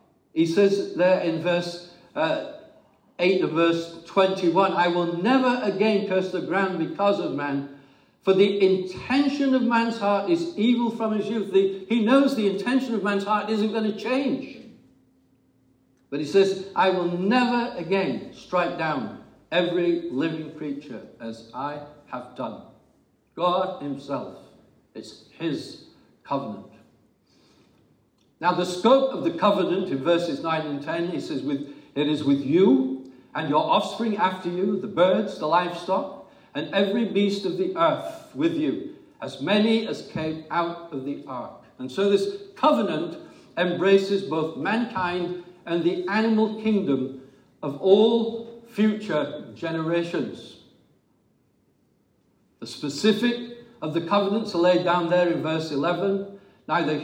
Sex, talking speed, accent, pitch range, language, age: male, 140 wpm, British, 170-220 Hz, English, 60-79